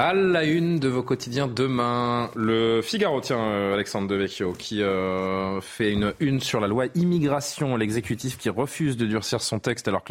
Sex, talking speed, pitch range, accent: male, 180 wpm, 105-130 Hz, French